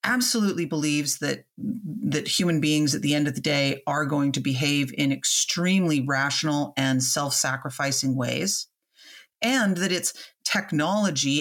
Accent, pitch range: American, 140-170 Hz